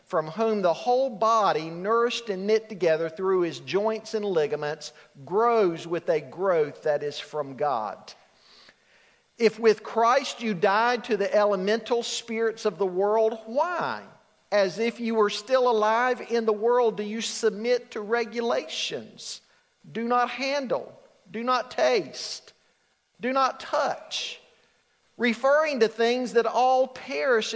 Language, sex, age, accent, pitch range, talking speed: English, male, 50-69, American, 190-240 Hz, 140 wpm